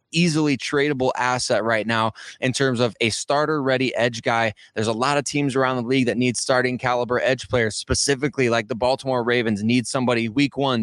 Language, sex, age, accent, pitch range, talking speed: English, male, 20-39, American, 120-140 Hz, 200 wpm